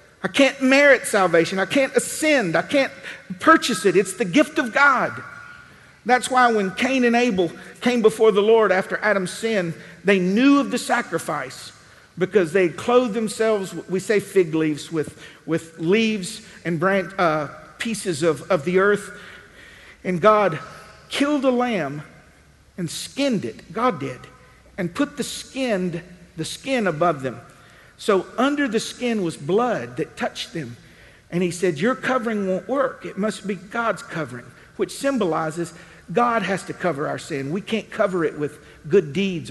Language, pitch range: English, 160-220 Hz